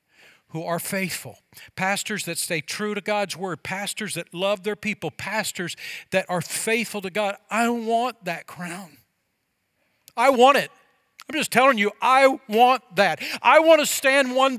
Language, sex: English, male